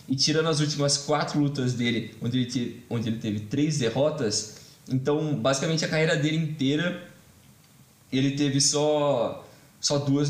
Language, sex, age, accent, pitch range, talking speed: Portuguese, male, 20-39, Brazilian, 125-150 Hz, 150 wpm